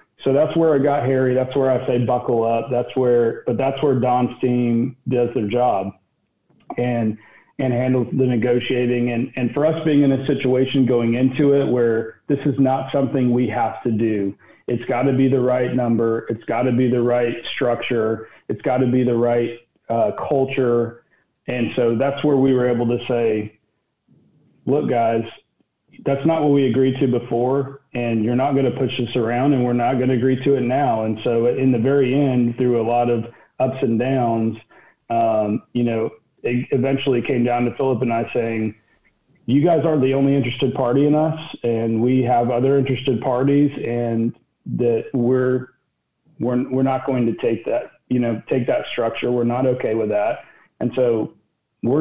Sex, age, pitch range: male, 40-59, 120-135 Hz